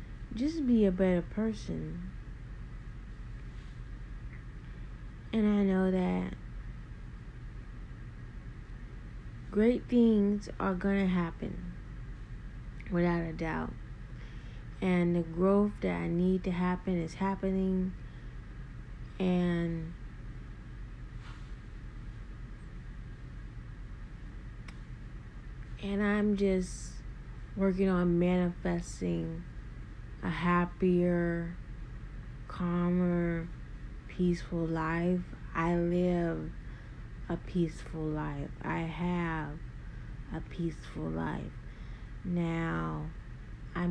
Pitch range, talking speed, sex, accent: 150-185 Hz, 70 wpm, female, American